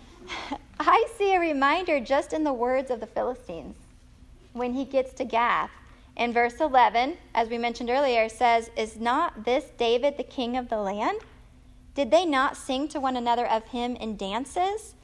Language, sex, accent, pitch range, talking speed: English, female, American, 230-300 Hz, 175 wpm